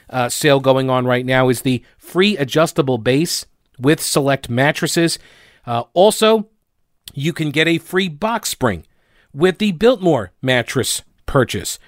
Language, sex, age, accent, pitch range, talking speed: English, male, 40-59, American, 125-160 Hz, 140 wpm